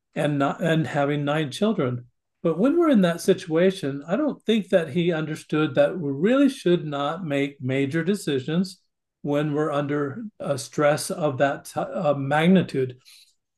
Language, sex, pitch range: English, male, 145-185 Hz